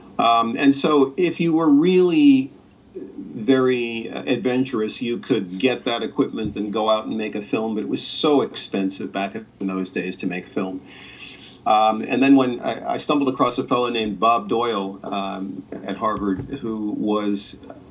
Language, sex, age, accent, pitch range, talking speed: English, male, 50-69, American, 100-130 Hz, 170 wpm